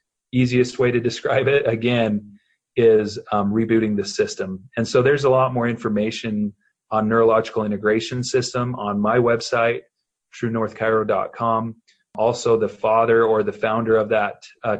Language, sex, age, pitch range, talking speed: English, male, 30-49, 110-120 Hz, 140 wpm